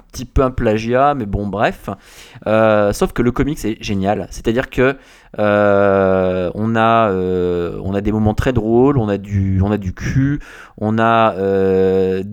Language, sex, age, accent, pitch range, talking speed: French, male, 20-39, French, 100-125 Hz, 175 wpm